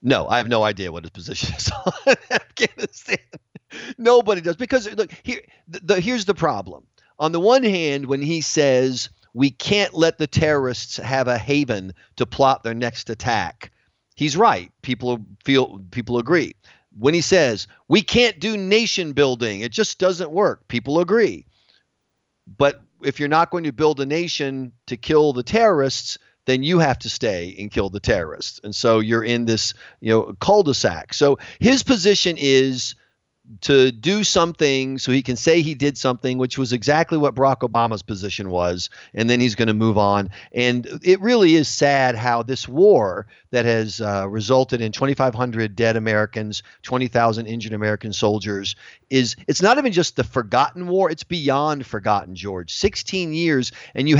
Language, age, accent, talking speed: English, 40-59, American, 175 wpm